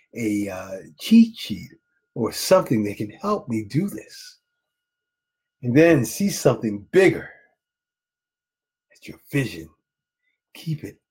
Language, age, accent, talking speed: English, 50-69, American, 120 wpm